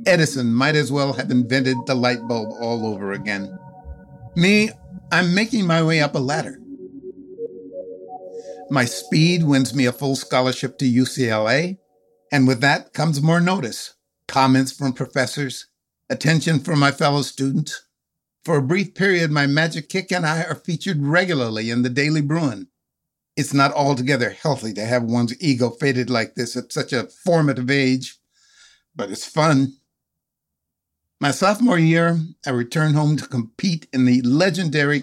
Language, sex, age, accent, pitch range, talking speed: English, male, 60-79, American, 120-160 Hz, 150 wpm